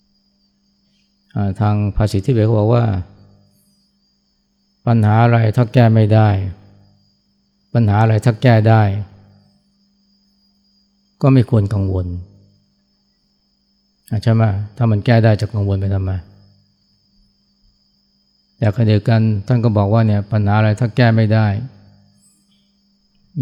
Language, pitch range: Thai, 100-135 Hz